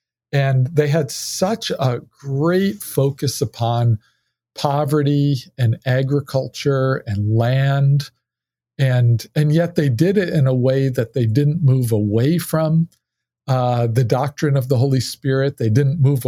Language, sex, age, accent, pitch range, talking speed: English, male, 50-69, American, 120-145 Hz, 140 wpm